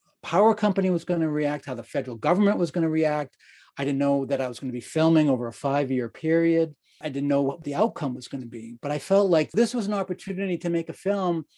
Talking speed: 260 wpm